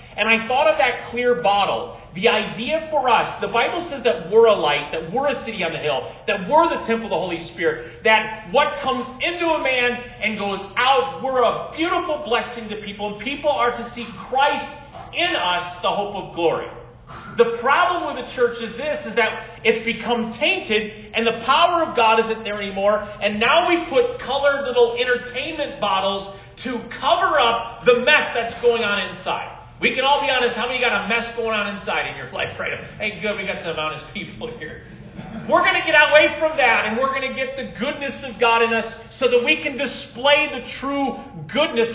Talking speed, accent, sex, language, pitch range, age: 210 wpm, American, male, English, 205-270 Hz, 40-59